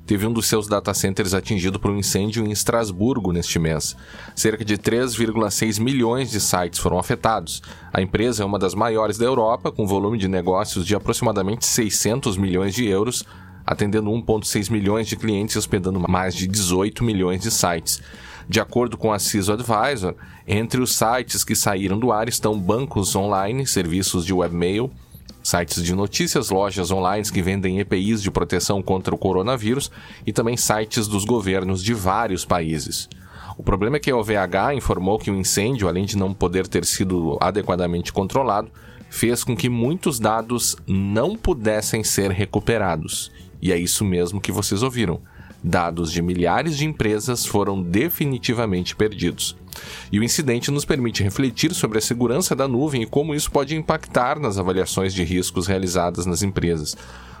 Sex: male